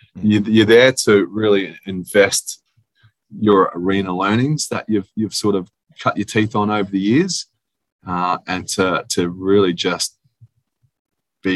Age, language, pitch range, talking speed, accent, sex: 20-39, English, 85-105 Hz, 145 wpm, Australian, male